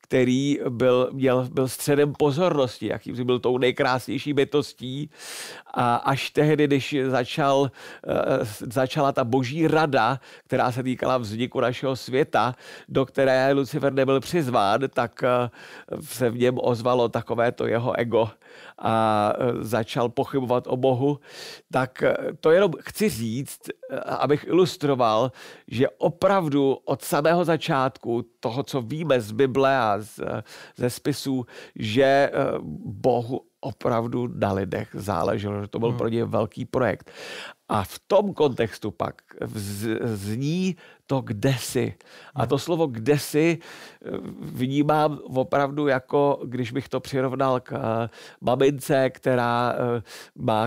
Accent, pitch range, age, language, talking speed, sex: native, 125-145 Hz, 50-69, Czech, 115 wpm, male